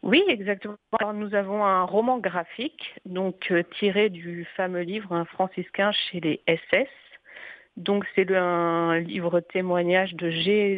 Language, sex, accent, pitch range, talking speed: French, female, French, 175-205 Hz, 150 wpm